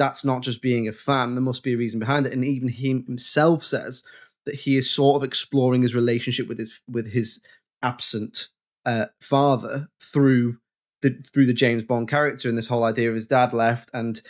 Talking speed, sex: 205 wpm, male